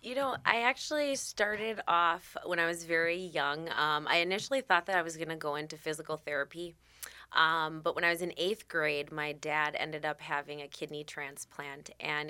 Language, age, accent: English, 20-39, American